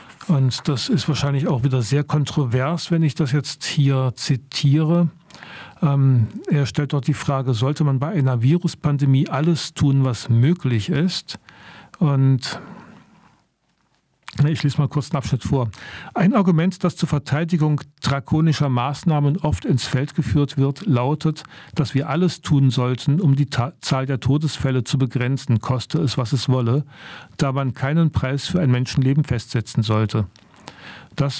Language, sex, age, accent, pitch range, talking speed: German, male, 50-69, German, 135-160 Hz, 150 wpm